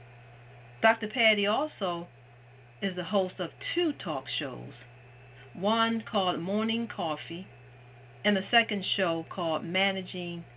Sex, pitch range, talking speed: female, 125-195 Hz, 115 wpm